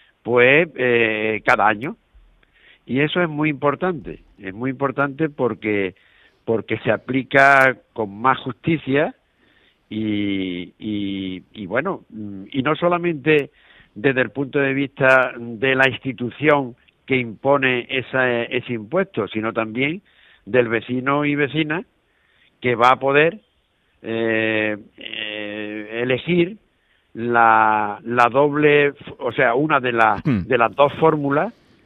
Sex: male